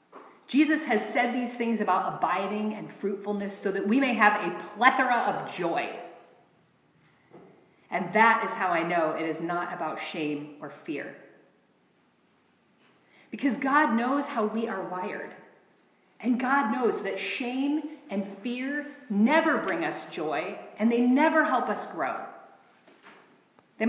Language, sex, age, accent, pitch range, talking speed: English, female, 30-49, American, 205-250 Hz, 140 wpm